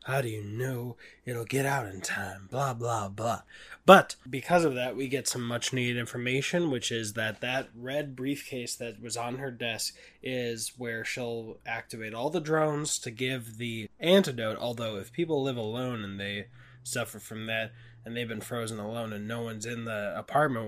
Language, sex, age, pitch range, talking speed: English, male, 20-39, 115-145 Hz, 190 wpm